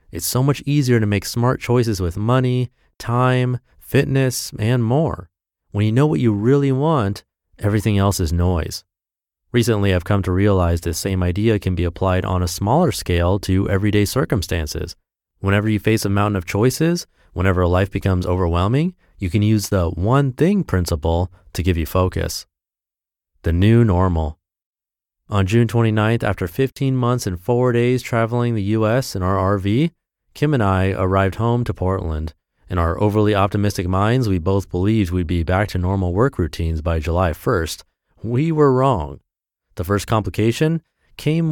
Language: English